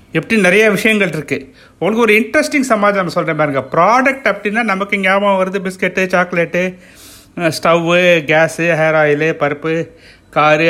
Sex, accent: male, native